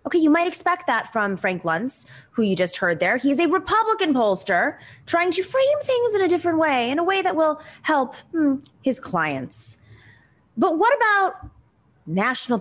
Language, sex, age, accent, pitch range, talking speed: English, female, 20-39, American, 190-315 Hz, 180 wpm